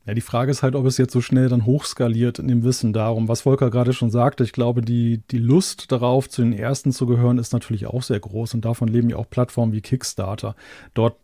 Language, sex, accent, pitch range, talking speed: German, male, German, 125-145 Hz, 245 wpm